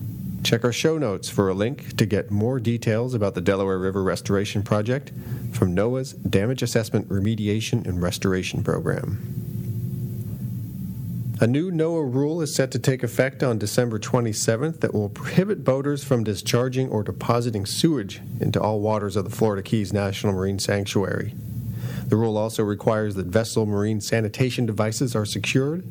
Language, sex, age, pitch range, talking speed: English, male, 40-59, 105-130 Hz, 155 wpm